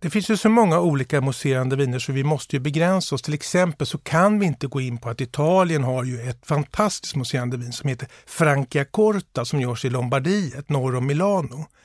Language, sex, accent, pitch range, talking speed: Swedish, male, native, 125-175 Hz, 215 wpm